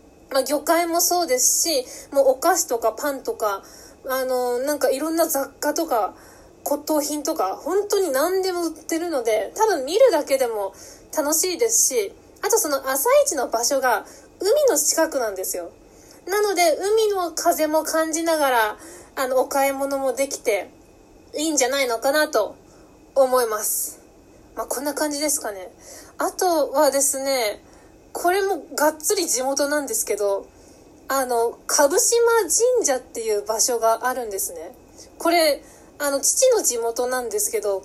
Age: 20-39